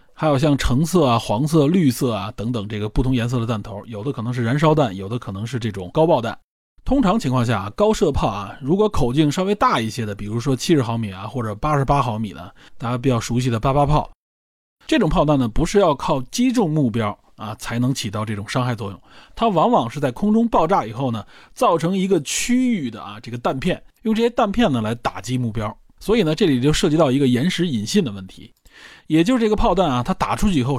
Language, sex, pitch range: Chinese, male, 115-175 Hz